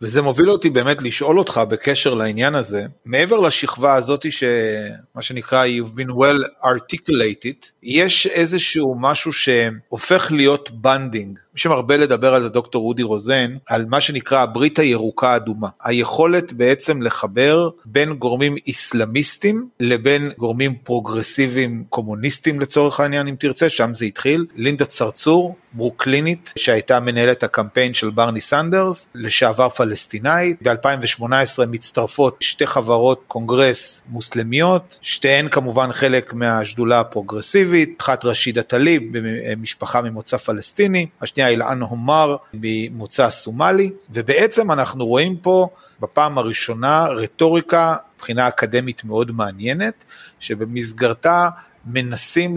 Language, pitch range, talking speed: Hebrew, 115-155 Hz, 115 wpm